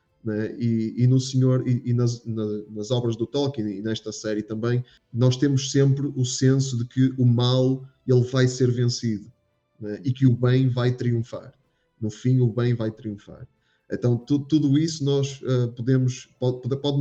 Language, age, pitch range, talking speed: Portuguese, 20-39, 120-135 Hz, 180 wpm